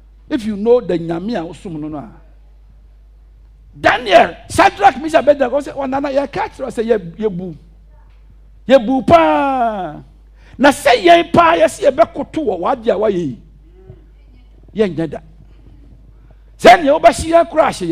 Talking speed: 35 wpm